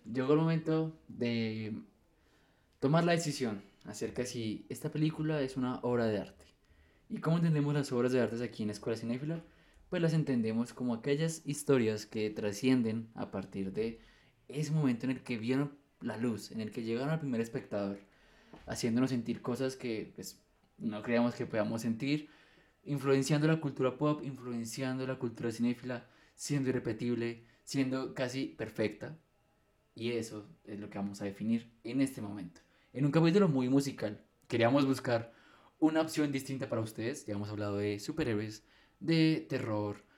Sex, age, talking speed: male, 20-39, 160 wpm